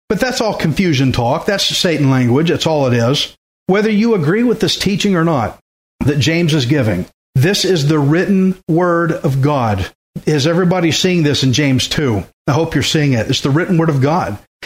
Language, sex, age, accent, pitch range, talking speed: English, male, 40-59, American, 135-185 Hz, 200 wpm